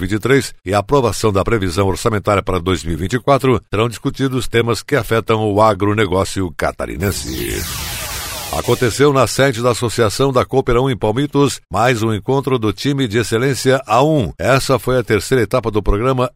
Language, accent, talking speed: Portuguese, Brazilian, 150 wpm